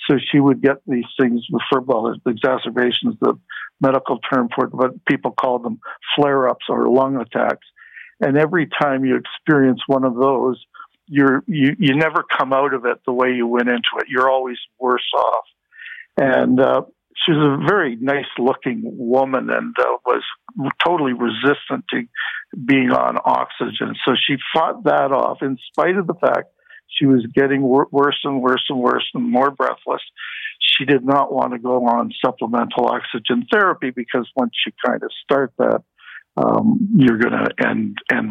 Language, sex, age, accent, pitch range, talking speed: English, male, 60-79, American, 125-145 Hz, 175 wpm